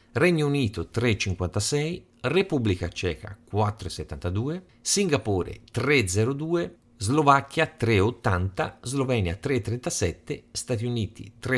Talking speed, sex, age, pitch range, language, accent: 75 wpm, male, 50-69, 95-130 Hz, Italian, native